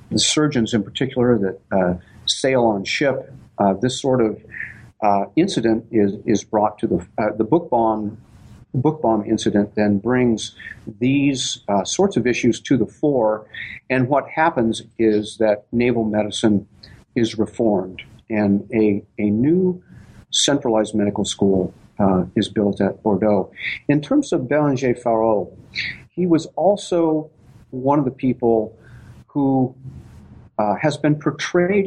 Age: 50-69